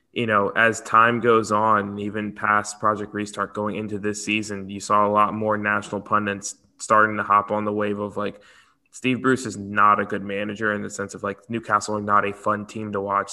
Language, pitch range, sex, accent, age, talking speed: English, 105-115 Hz, male, American, 20-39, 220 wpm